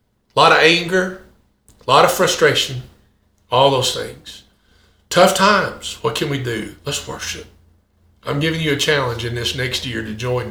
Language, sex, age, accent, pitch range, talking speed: English, male, 50-69, American, 125-165 Hz, 170 wpm